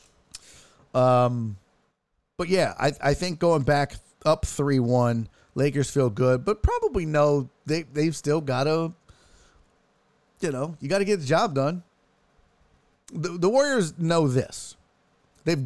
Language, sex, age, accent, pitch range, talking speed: English, male, 30-49, American, 115-165 Hz, 140 wpm